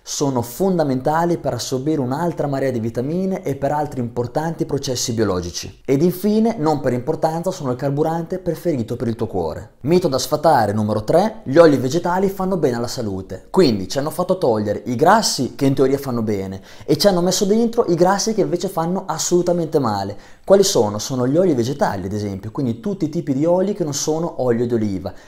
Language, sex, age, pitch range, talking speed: Italian, male, 20-39, 115-170 Hz, 195 wpm